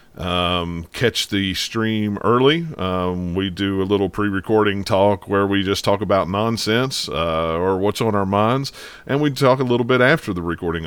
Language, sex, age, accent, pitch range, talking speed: English, male, 40-59, American, 90-120 Hz, 180 wpm